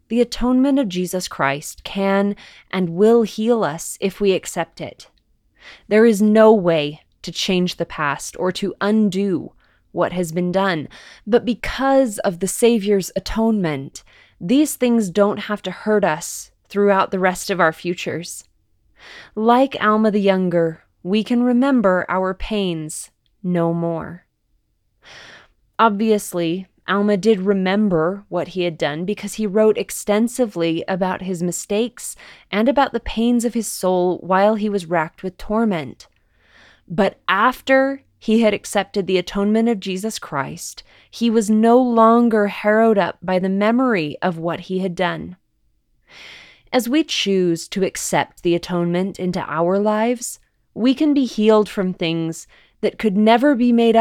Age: 20-39